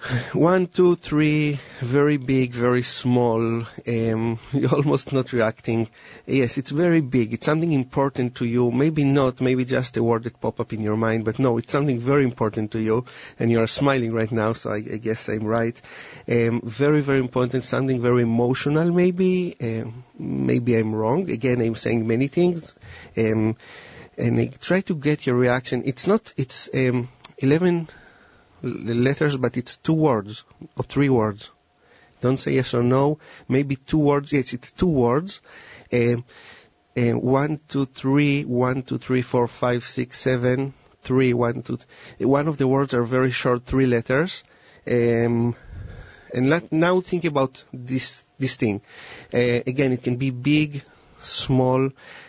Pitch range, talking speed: 120-140 Hz, 165 wpm